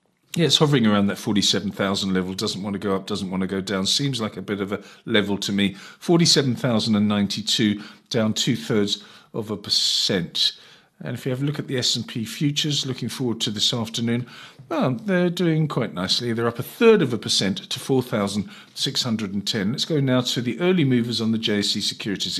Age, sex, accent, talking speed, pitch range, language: 50-69, male, British, 195 wpm, 105-140 Hz, English